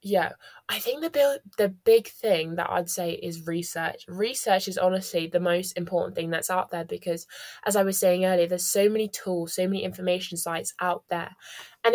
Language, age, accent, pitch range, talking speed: English, 20-39, British, 180-215 Hz, 195 wpm